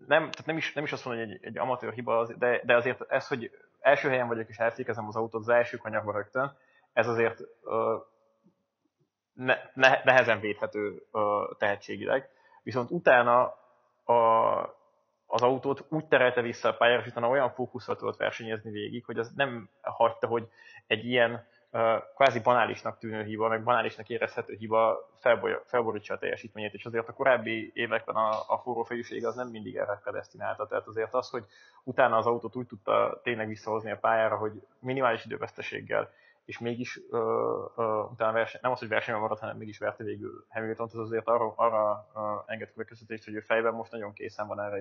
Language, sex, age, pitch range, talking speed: Hungarian, male, 20-39, 110-120 Hz, 175 wpm